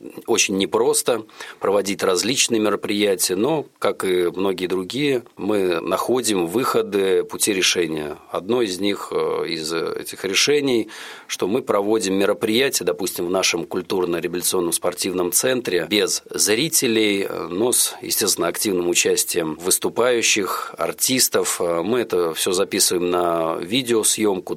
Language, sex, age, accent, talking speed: Russian, male, 40-59, native, 110 wpm